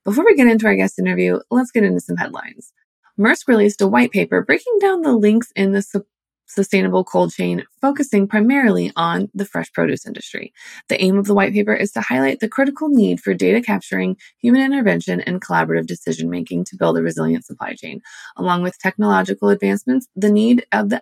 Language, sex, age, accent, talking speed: English, female, 20-39, American, 195 wpm